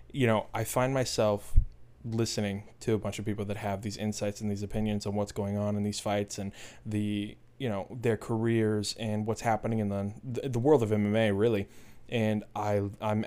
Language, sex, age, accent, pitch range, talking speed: English, male, 20-39, American, 100-115 Hz, 200 wpm